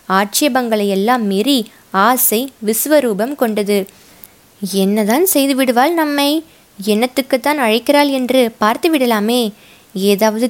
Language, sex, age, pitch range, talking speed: Tamil, female, 20-39, 205-250 Hz, 85 wpm